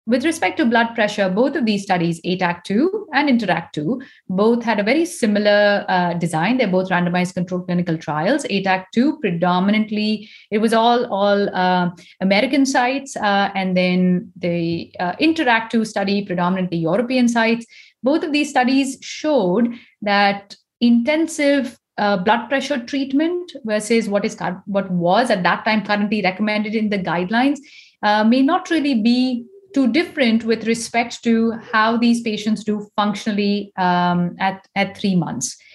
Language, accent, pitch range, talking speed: English, Indian, 195-250 Hz, 150 wpm